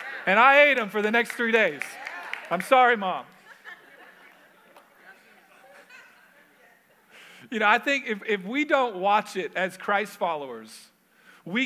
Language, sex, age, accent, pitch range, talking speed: English, male, 40-59, American, 170-220 Hz, 135 wpm